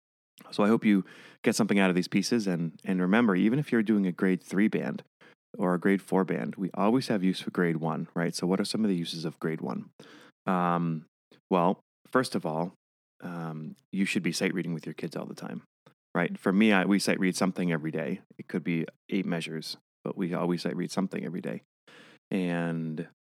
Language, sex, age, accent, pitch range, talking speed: English, male, 30-49, American, 80-95 Hz, 220 wpm